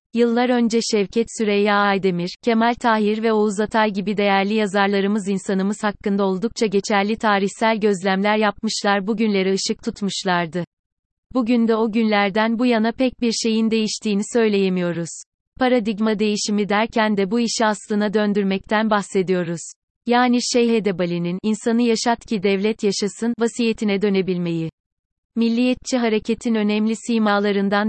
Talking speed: 125 wpm